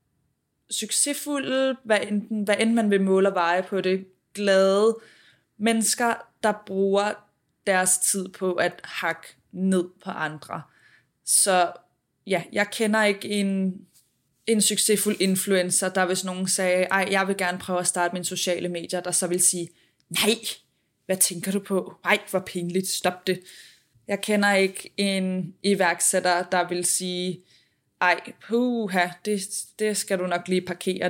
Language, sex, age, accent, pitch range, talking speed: Danish, female, 20-39, native, 180-205 Hz, 150 wpm